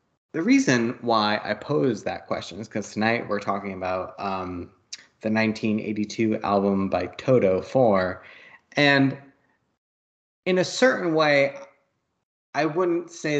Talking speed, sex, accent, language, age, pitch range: 125 wpm, male, American, English, 30-49, 105-135 Hz